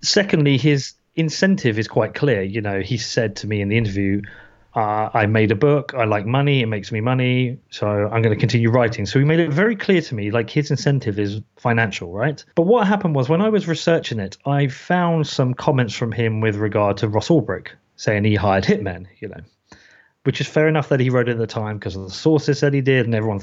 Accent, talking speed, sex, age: British, 240 wpm, male, 30-49